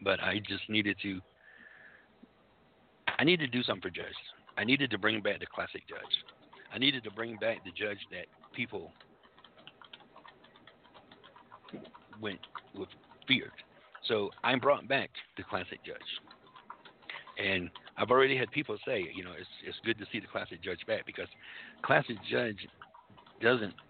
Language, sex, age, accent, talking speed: English, male, 60-79, American, 150 wpm